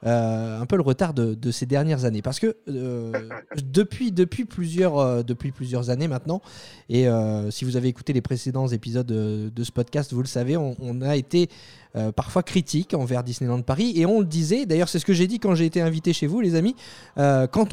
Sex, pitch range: male, 125-175 Hz